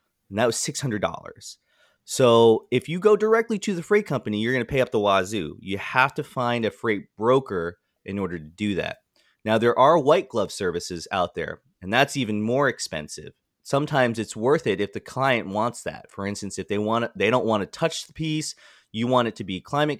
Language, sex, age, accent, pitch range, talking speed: English, male, 30-49, American, 90-125 Hz, 215 wpm